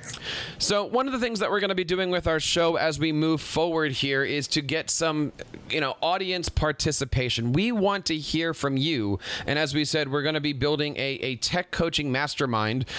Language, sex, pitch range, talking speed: English, male, 140-185 Hz, 215 wpm